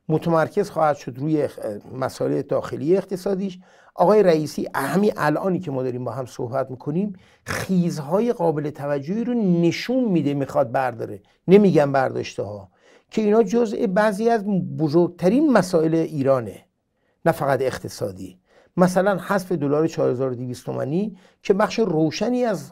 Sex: male